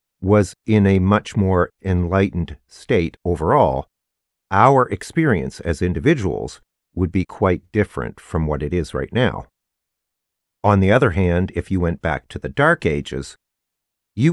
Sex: male